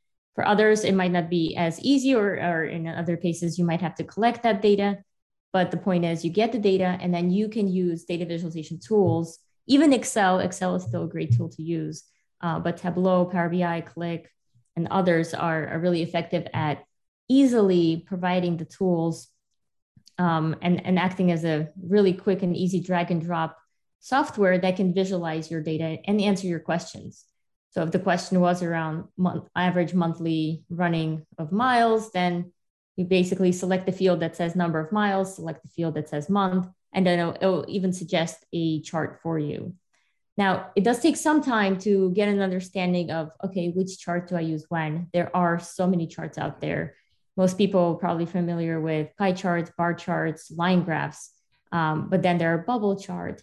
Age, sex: 20-39, female